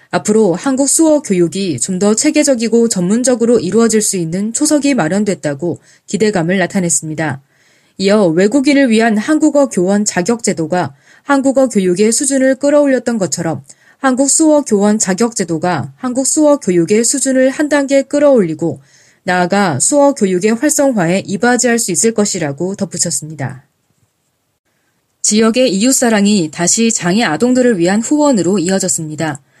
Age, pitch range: 20-39, 170-250 Hz